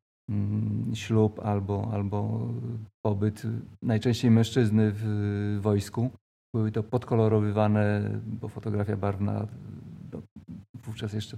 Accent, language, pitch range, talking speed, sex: native, Polish, 105-120 Hz, 85 wpm, male